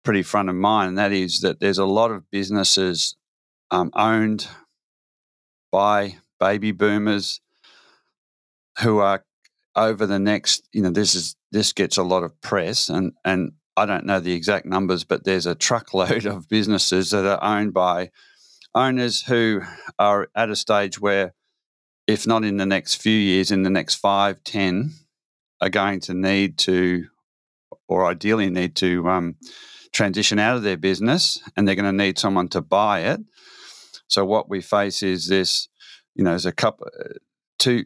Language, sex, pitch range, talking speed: English, male, 95-105 Hz, 170 wpm